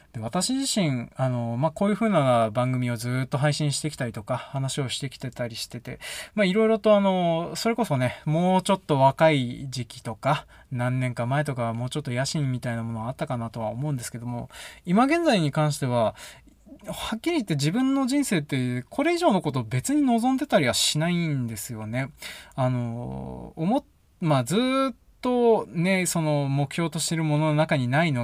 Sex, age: male, 20-39